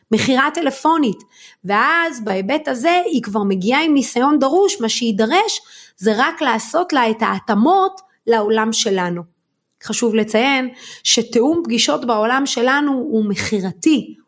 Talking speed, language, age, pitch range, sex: 120 wpm, Hebrew, 30-49, 205-285 Hz, female